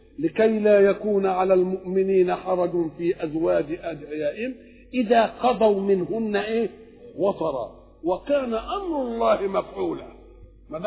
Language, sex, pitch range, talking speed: English, male, 165-230 Hz, 105 wpm